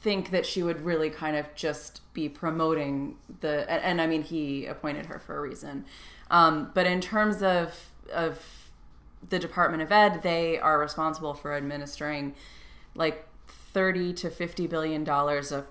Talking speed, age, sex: 155 wpm, 20-39, female